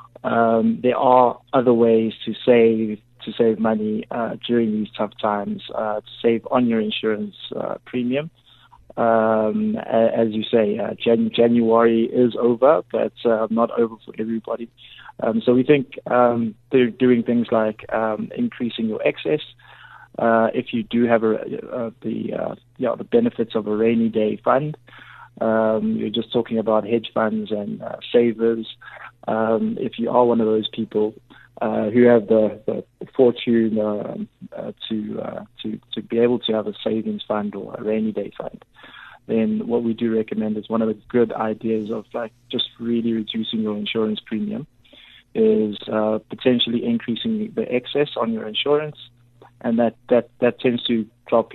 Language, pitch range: English, 110-120 Hz